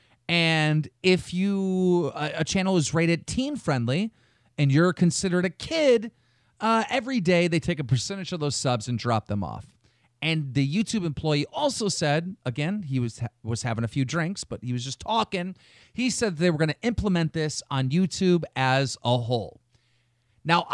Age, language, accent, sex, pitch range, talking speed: 30-49, English, American, male, 120-170 Hz, 175 wpm